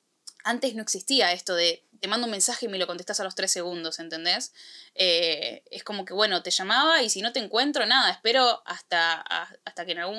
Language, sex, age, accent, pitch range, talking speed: Spanish, female, 10-29, Argentinian, 185-230 Hz, 225 wpm